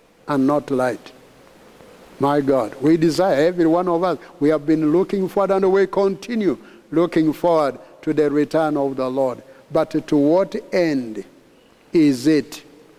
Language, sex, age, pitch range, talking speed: English, male, 60-79, 150-170 Hz, 155 wpm